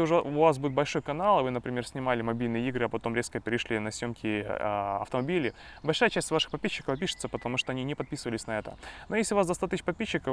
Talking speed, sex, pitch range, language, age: 225 wpm, male, 120-160 Hz, Russian, 20-39